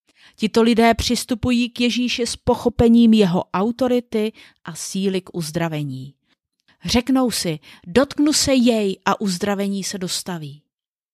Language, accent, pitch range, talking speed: Czech, native, 185-240 Hz, 120 wpm